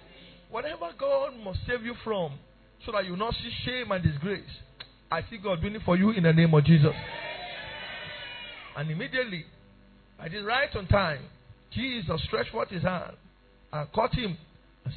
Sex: male